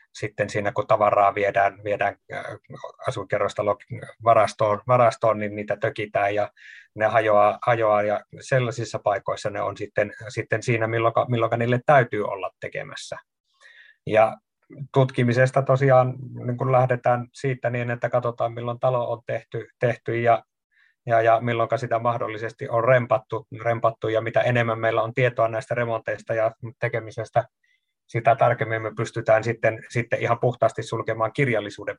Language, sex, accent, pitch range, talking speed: Finnish, male, native, 110-125 Hz, 135 wpm